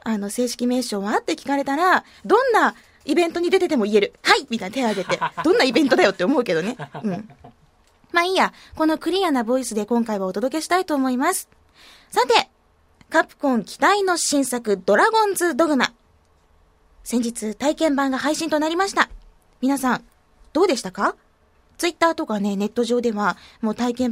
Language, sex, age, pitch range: Japanese, female, 20-39, 220-350 Hz